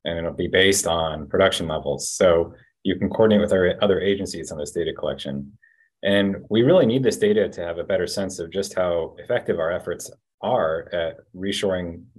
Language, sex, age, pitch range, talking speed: English, male, 30-49, 85-105 Hz, 190 wpm